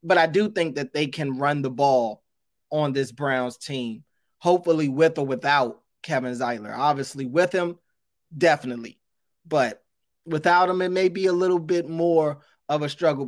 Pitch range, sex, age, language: 130-160 Hz, male, 20-39, English